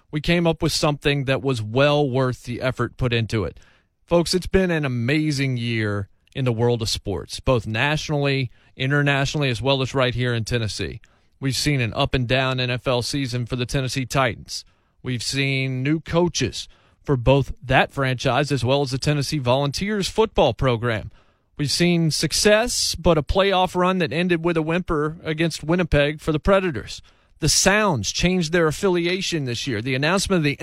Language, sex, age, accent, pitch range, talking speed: English, male, 30-49, American, 120-170 Hz, 175 wpm